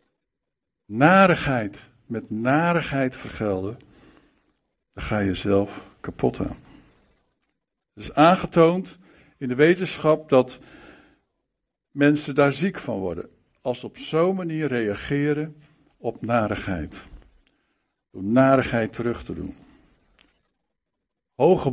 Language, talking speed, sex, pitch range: Dutch, 100 wpm, male, 110-155 Hz